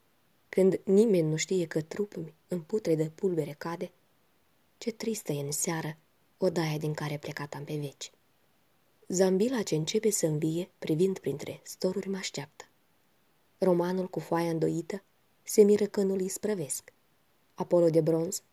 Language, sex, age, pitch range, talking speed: Romanian, female, 20-39, 165-205 Hz, 145 wpm